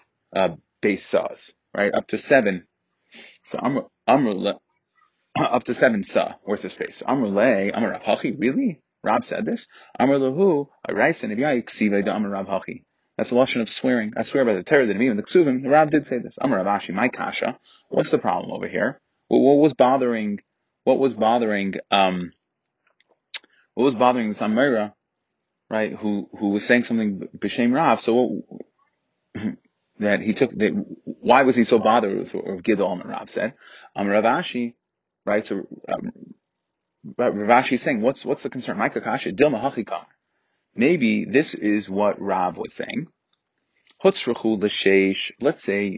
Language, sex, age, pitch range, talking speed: English, male, 30-49, 100-130 Hz, 165 wpm